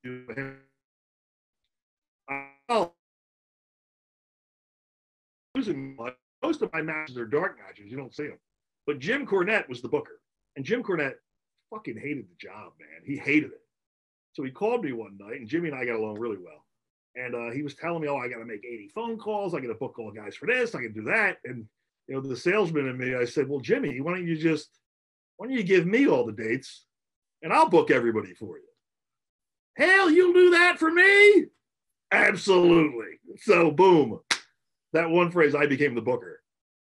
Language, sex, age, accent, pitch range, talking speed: English, male, 40-59, American, 140-220 Hz, 180 wpm